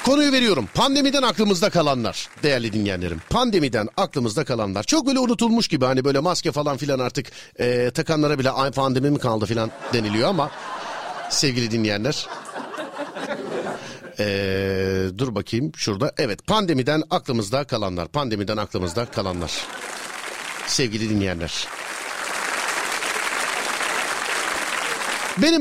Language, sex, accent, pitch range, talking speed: Turkish, male, native, 115-175 Hz, 105 wpm